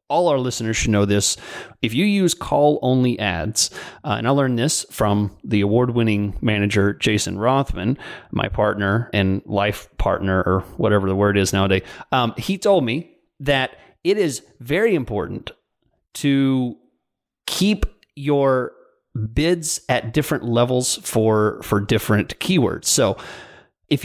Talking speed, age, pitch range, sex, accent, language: 140 wpm, 30-49, 105-145 Hz, male, American, English